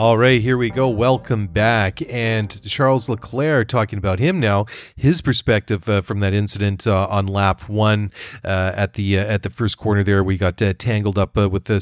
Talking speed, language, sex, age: 210 wpm, English, male, 40-59